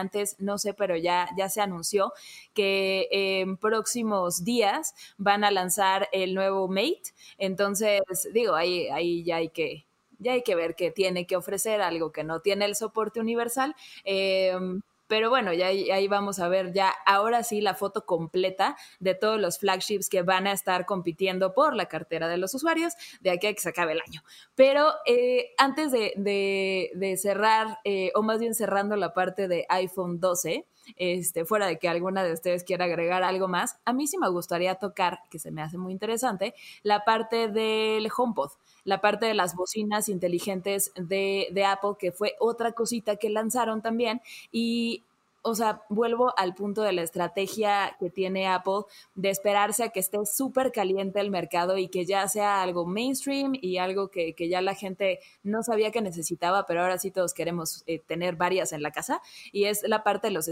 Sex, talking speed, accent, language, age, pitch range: female, 190 wpm, Mexican, Spanish, 20-39, 185-220 Hz